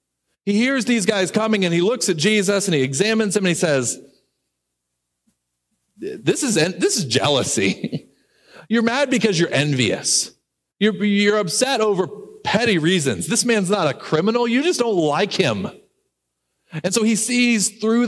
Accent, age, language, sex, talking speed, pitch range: American, 40-59, English, male, 160 wpm, 120-200 Hz